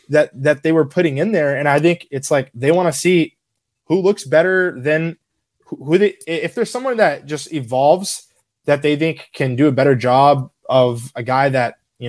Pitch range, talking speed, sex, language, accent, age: 130-160 Hz, 205 wpm, male, English, American, 20-39